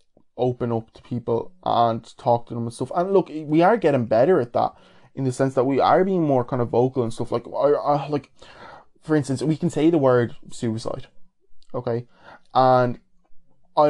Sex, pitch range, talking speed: male, 120-155 Hz, 200 wpm